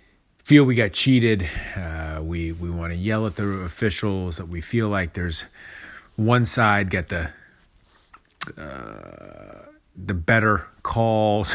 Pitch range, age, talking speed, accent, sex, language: 90-110 Hz, 30-49, 135 wpm, American, male, English